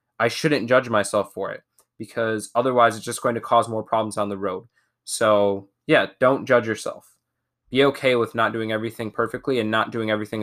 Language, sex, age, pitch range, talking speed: English, male, 20-39, 100-120 Hz, 195 wpm